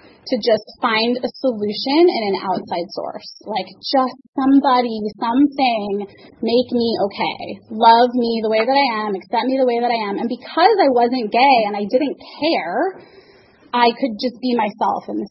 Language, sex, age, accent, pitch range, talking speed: English, female, 20-39, American, 220-275 Hz, 175 wpm